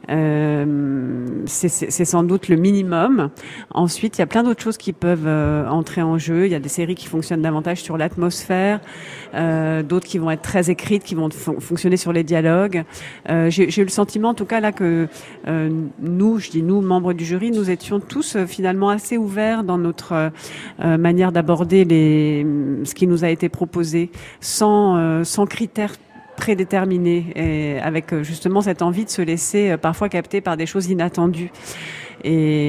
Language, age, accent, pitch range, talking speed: French, 50-69, French, 160-190 Hz, 190 wpm